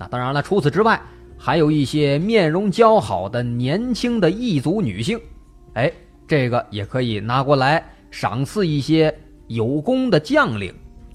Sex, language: male, Chinese